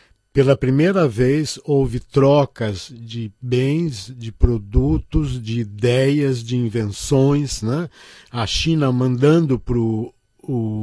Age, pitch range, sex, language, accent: 50-69, 105-135 Hz, male, Chinese, Brazilian